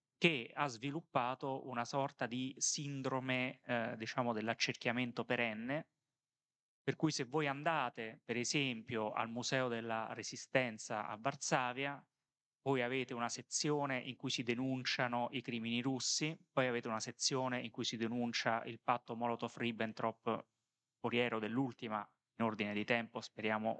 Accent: native